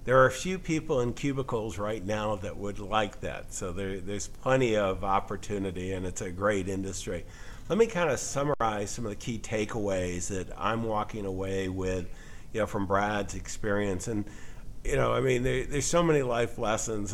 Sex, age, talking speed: male, 50-69, 195 wpm